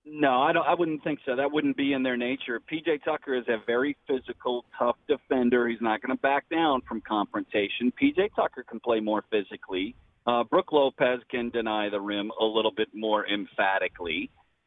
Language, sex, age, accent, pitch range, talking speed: English, male, 40-59, American, 115-175 Hz, 190 wpm